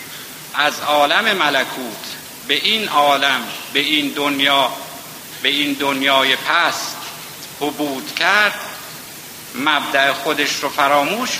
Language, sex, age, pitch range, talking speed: Persian, male, 60-79, 135-155 Hz, 100 wpm